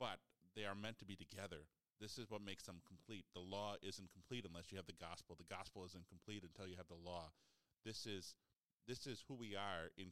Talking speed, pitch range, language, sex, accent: 230 wpm, 90-115 Hz, English, male, American